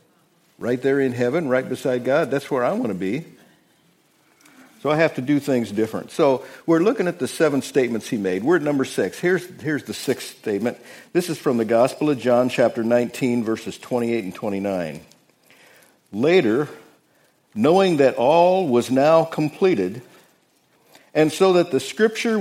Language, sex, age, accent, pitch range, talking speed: English, male, 50-69, American, 125-170 Hz, 170 wpm